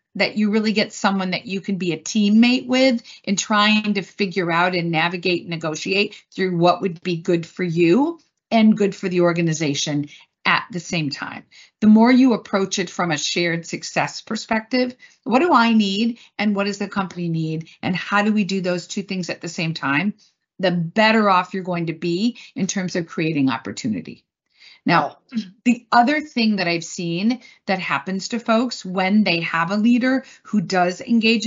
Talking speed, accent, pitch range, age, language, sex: 190 wpm, American, 175-220 Hz, 50-69, English, female